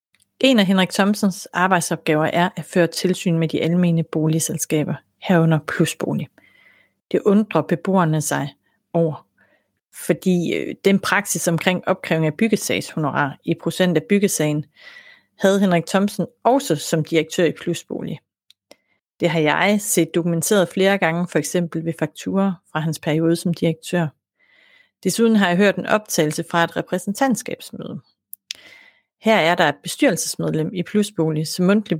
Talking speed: 135 wpm